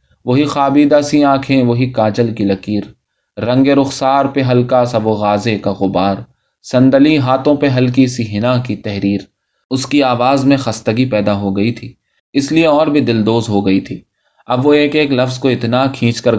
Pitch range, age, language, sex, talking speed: 110-140 Hz, 20-39, Urdu, male, 185 wpm